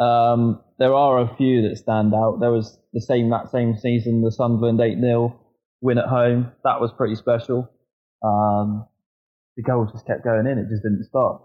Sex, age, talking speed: male, 20-39, 190 wpm